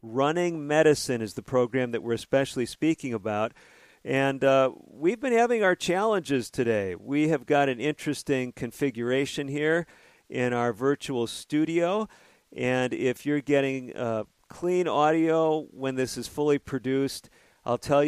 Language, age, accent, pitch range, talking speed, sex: English, 50-69, American, 125-150 Hz, 145 wpm, male